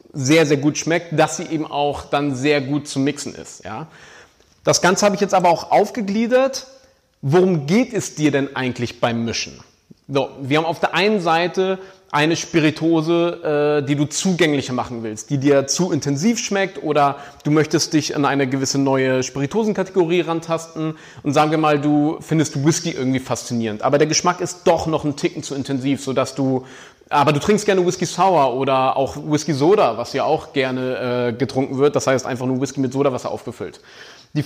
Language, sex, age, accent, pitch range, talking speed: German, male, 30-49, German, 140-175 Hz, 190 wpm